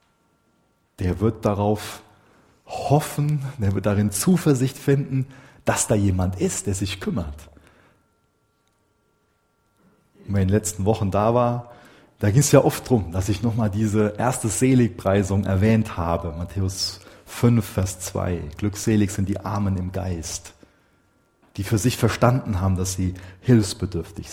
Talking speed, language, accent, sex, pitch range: 145 wpm, German, German, male, 90-115 Hz